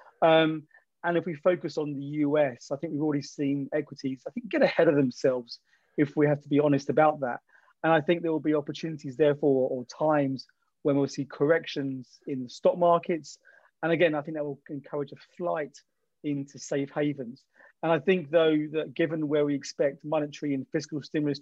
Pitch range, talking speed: 140-160 Hz, 200 wpm